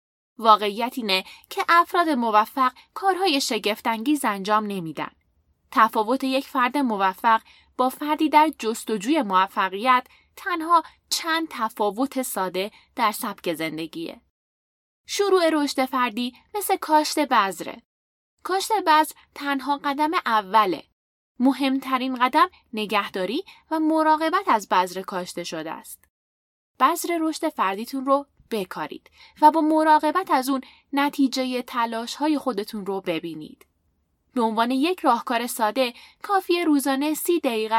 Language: Persian